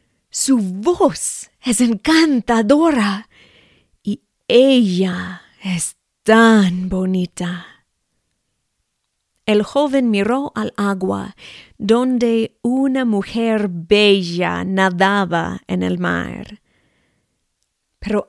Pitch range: 185-240 Hz